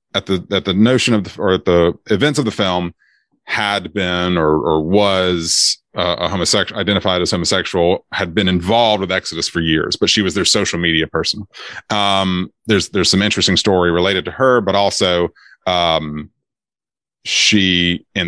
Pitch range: 75-100 Hz